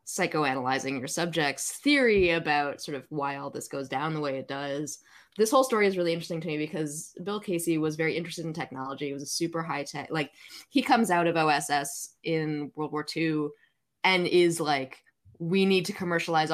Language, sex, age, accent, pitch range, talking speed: English, female, 10-29, American, 145-175 Hz, 200 wpm